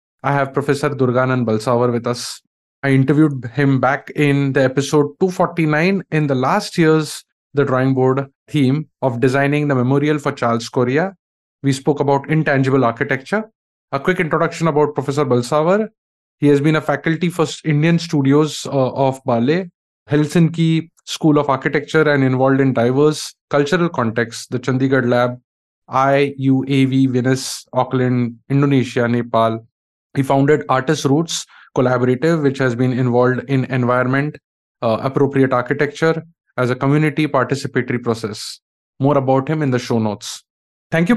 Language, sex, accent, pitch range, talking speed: English, male, Indian, 130-155 Hz, 145 wpm